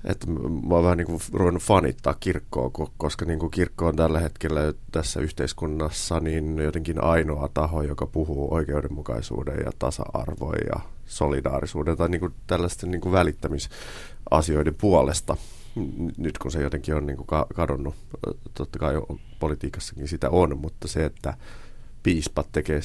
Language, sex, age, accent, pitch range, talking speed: Finnish, male, 30-49, native, 75-90 Hz, 130 wpm